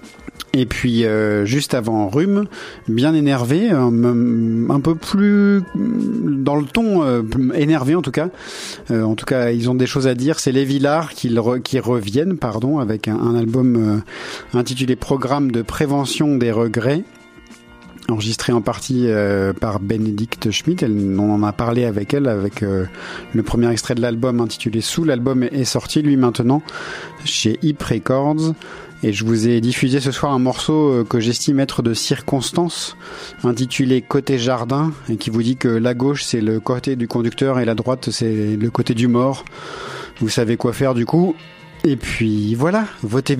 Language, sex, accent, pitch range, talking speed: French, male, French, 115-145 Hz, 175 wpm